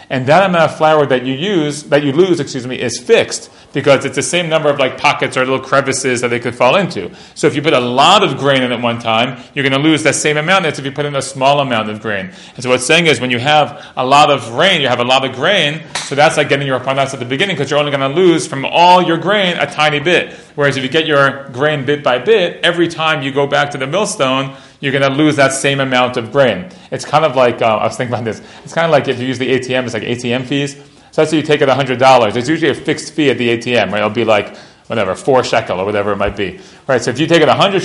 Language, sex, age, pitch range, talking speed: English, male, 30-49, 130-150 Hz, 295 wpm